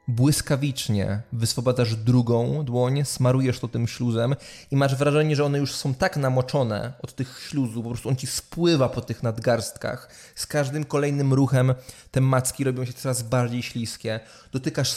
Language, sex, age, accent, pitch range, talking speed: English, male, 20-39, Polish, 115-140 Hz, 160 wpm